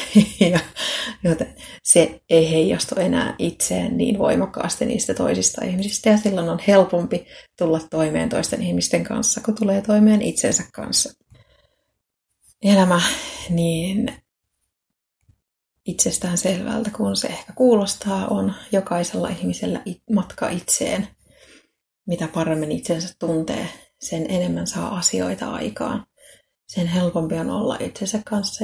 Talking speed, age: 110 wpm, 30-49